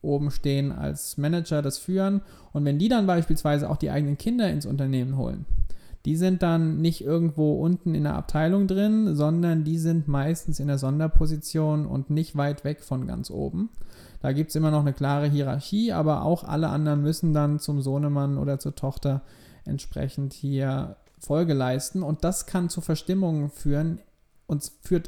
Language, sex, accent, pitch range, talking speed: German, male, German, 145-165 Hz, 175 wpm